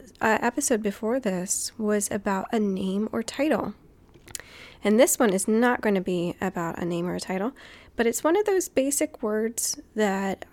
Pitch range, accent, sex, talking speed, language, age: 200-250 Hz, American, female, 180 wpm, English, 20-39